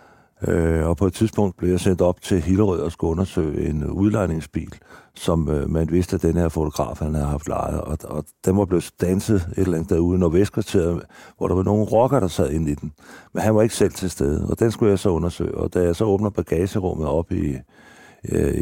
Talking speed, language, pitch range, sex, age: 220 wpm, Danish, 85-100 Hz, male, 60-79